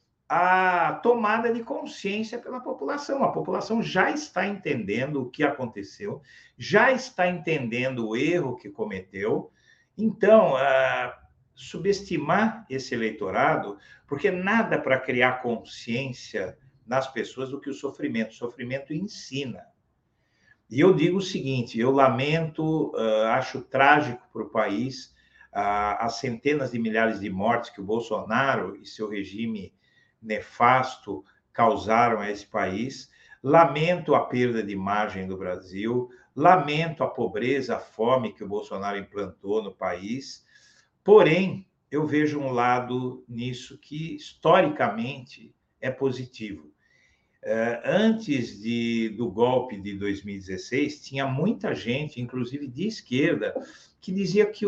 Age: 60-79